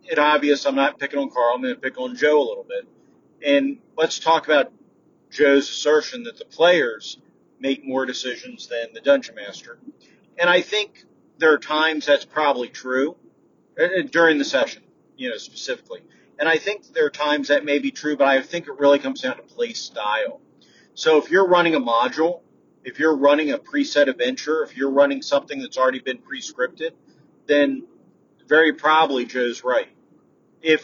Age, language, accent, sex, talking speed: 40-59, English, American, male, 185 wpm